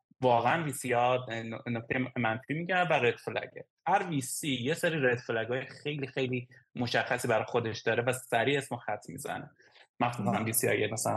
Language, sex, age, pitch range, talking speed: Persian, male, 20-39, 115-140 Hz, 165 wpm